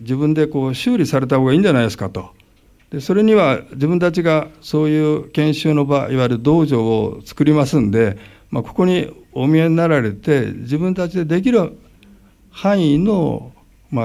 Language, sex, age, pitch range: Japanese, male, 60-79, 115-155 Hz